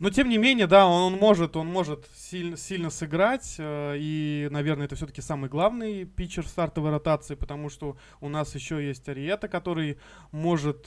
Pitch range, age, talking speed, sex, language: 140-170 Hz, 20-39, 175 wpm, male, Russian